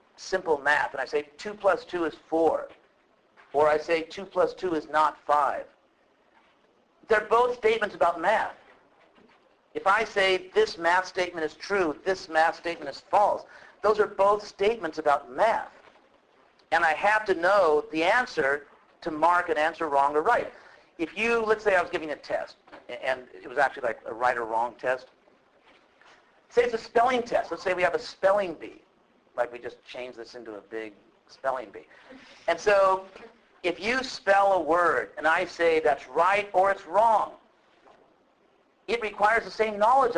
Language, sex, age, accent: English, male, 50-69, American